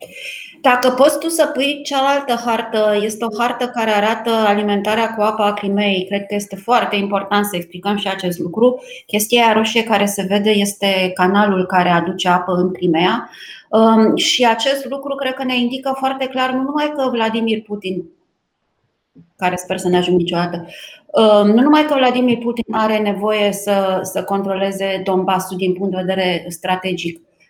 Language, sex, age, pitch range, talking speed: Romanian, female, 20-39, 190-230 Hz, 160 wpm